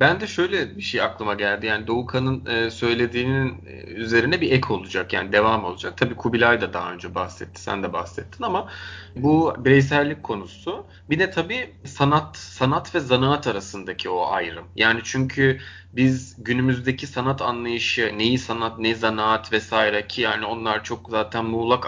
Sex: male